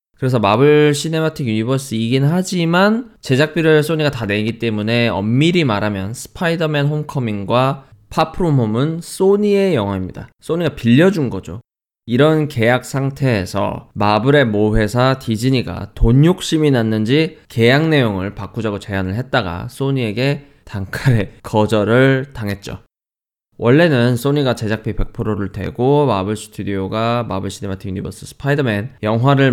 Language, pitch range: Korean, 105-145 Hz